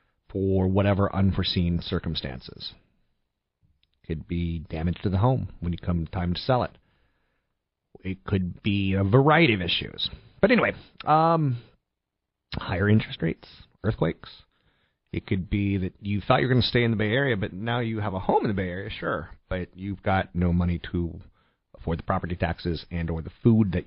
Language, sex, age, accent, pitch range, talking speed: English, male, 40-59, American, 90-120 Hz, 185 wpm